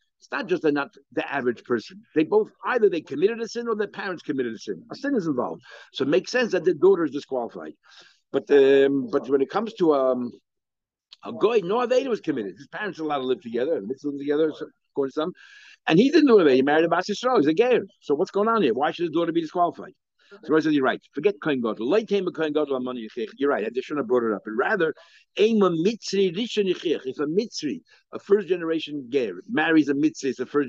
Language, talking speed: English, 225 wpm